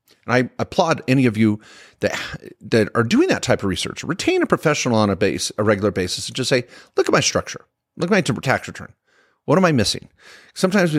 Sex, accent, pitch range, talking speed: male, American, 105-130 Hz, 220 wpm